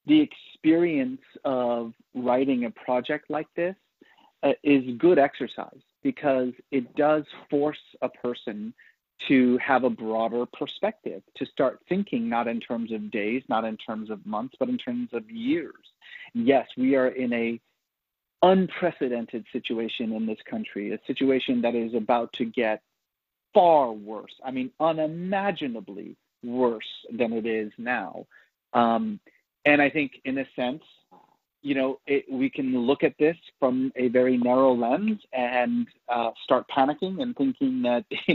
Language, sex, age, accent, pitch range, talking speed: English, male, 40-59, American, 125-165 Hz, 150 wpm